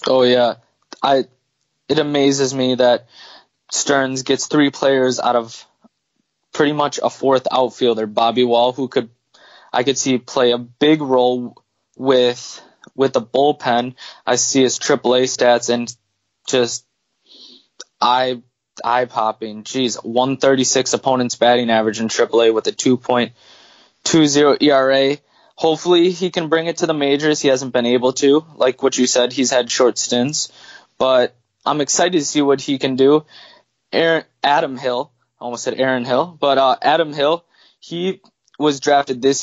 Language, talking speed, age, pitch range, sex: English, 150 wpm, 20-39, 125-145 Hz, male